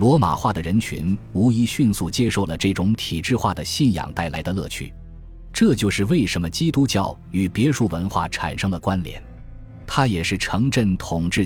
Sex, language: male, Chinese